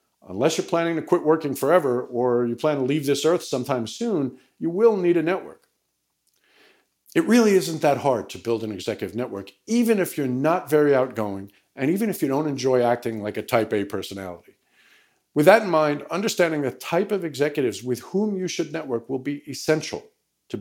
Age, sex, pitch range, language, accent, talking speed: 50-69, male, 130-185 Hz, English, American, 195 wpm